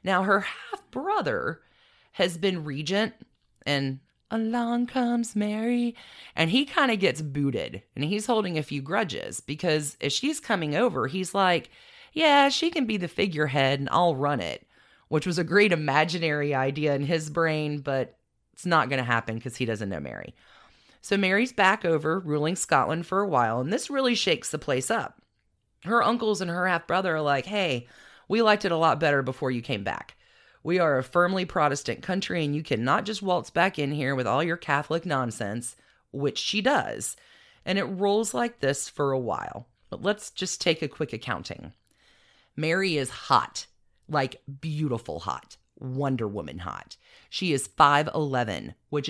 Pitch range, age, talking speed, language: 135-195 Hz, 30-49, 175 wpm, English